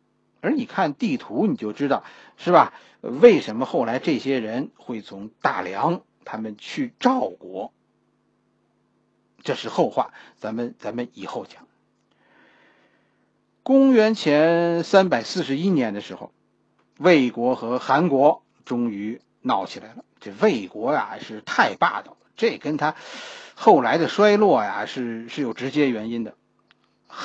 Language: Chinese